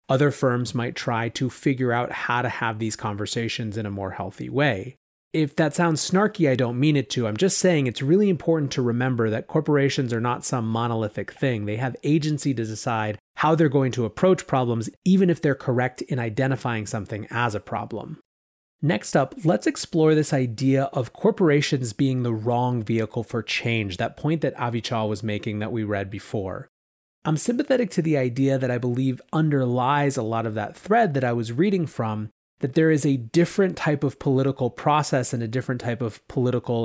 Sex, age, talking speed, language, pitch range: male, 30-49, 195 wpm, English, 115-150 Hz